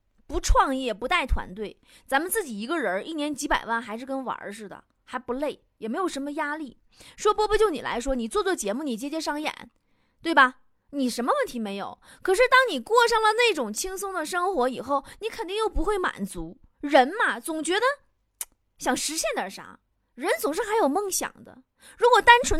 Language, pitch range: Chinese, 245-395 Hz